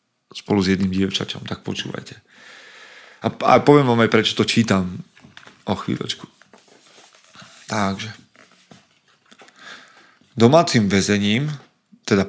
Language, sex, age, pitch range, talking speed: Slovak, male, 40-59, 100-125 Hz, 100 wpm